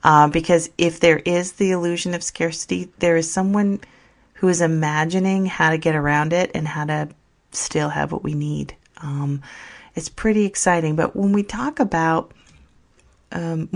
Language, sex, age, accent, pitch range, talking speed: English, female, 40-59, American, 160-180 Hz, 165 wpm